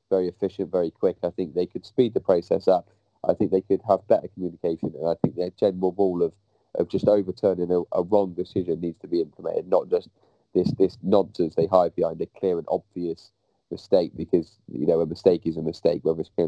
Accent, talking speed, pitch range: British, 220 wpm, 85-100 Hz